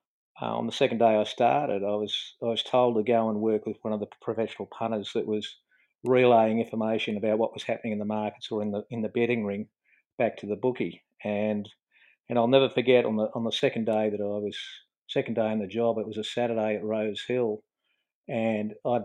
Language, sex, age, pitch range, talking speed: English, male, 50-69, 110-120 Hz, 225 wpm